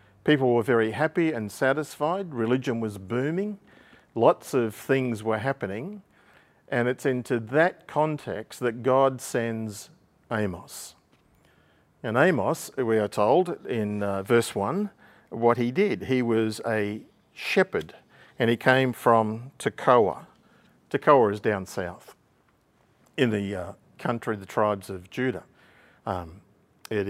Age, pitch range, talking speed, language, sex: 50-69, 110-135 Hz, 130 wpm, English, male